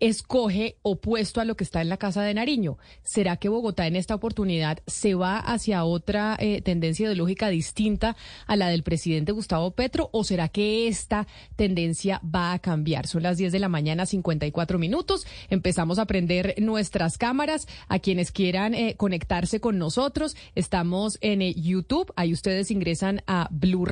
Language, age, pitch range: Spanish, 30-49, 175-220 Hz